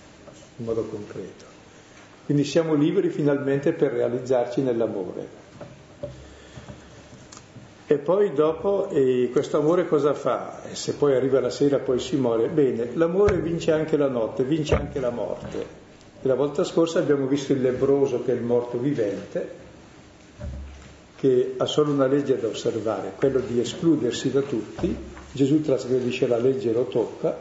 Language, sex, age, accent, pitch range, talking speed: Italian, male, 50-69, native, 115-150 Hz, 150 wpm